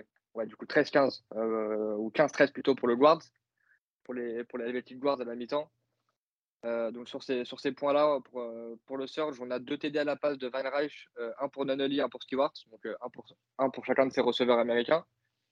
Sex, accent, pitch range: male, French, 125-155 Hz